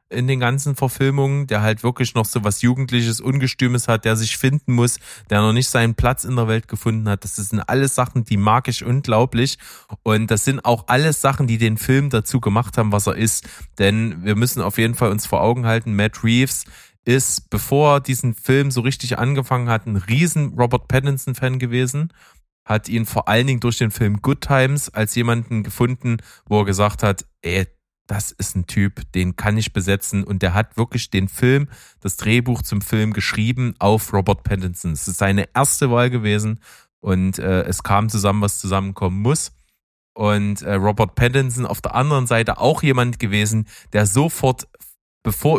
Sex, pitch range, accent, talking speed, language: male, 105-125 Hz, German, 190 wpm, German